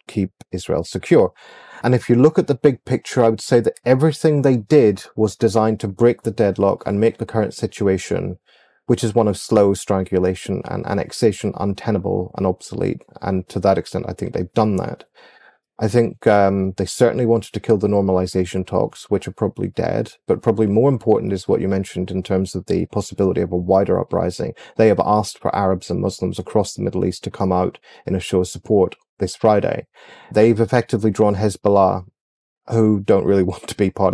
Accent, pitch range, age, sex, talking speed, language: British, 95-110 Hz, 30-49, male, 200 wpm, English